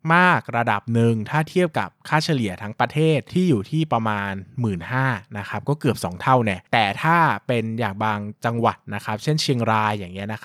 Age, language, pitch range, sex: 20-39, Thai, 105-135 Hz, male